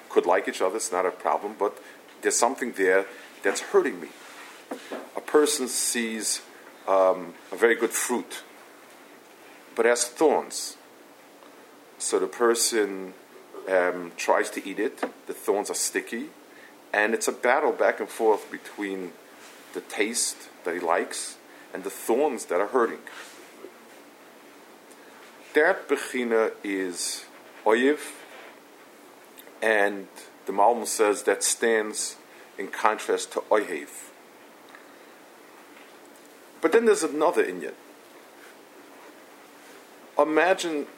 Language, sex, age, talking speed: English, male, 50-69, 115 wpm